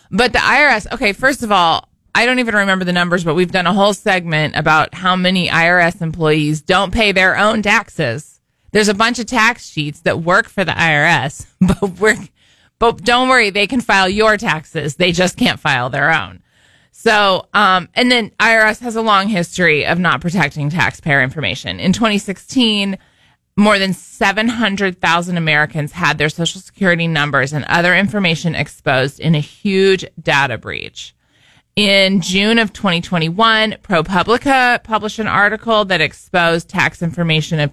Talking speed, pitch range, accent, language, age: 165 wpm, 155-205 Hz, American, English, 20-39